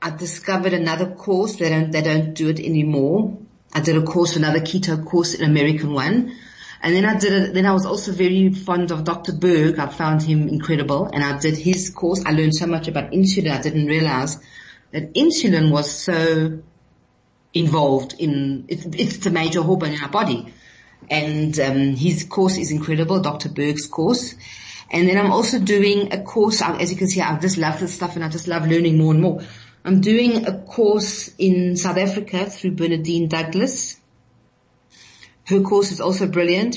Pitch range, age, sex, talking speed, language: 155-185 Hz, 40-59, female, 185 wpm, English